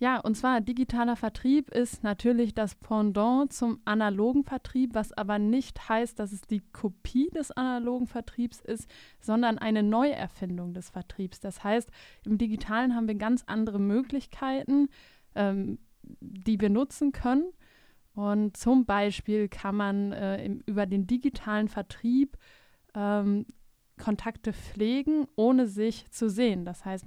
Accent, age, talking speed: German, 20-39, 135 wpm